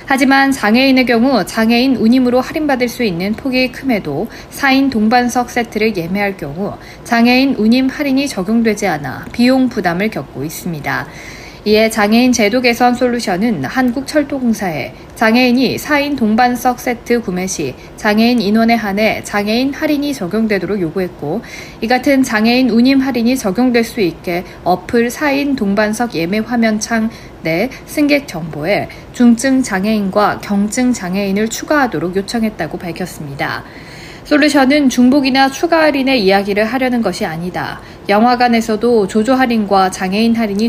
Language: Korean